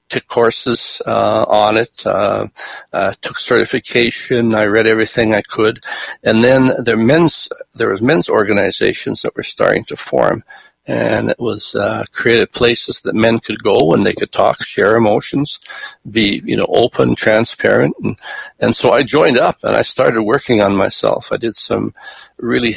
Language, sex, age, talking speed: English, male, 60-79, 165 wpm